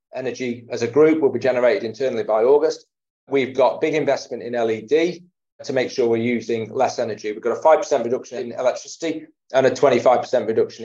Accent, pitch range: British, 130-170 Hz